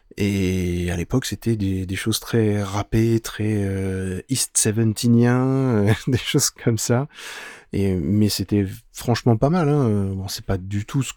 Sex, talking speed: male, 165 wpm